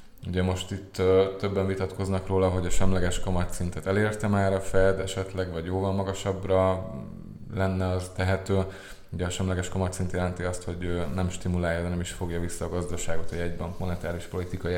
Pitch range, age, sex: 85-95 Hz, 20-39, male